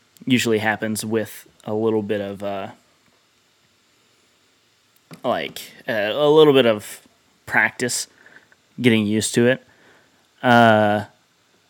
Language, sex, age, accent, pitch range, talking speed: English, male, 20-39, American, 110-130 Hz, 105 wpm